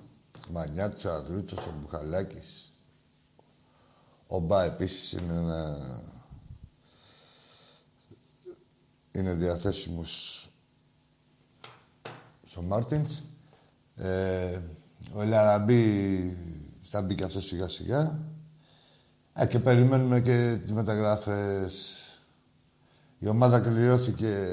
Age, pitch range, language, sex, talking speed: 60-79, 90-120 Hz, Greek, male, 75 wpm